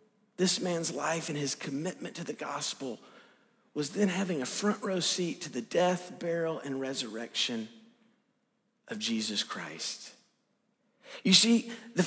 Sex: male